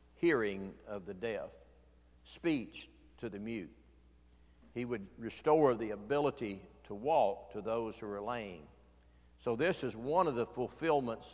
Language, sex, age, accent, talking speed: English, male, 60-79, American, 145 wpm